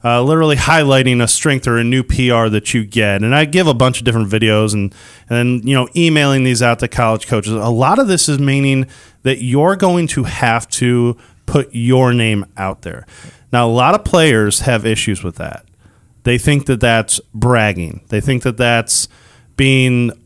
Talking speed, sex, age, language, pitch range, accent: 195 wpm, male, 30-49, English, 110-140 Hz, American